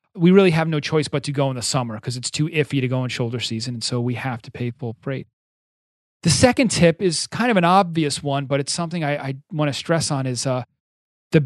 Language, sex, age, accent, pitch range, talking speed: English, male, 30-49, American, 130-160 Hz, 250 wpm